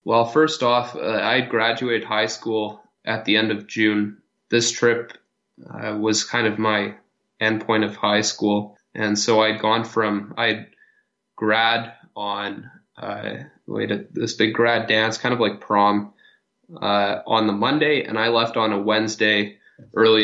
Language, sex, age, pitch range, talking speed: English, male, 20-39, 105-115 Hz, 155 wpm